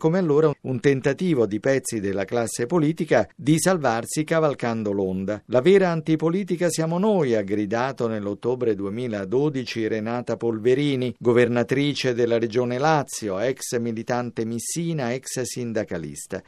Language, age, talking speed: Italian, 50-69, 120 wpm